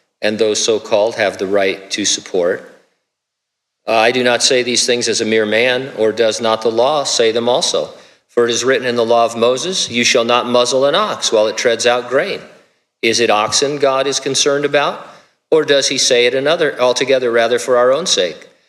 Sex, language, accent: male, English, American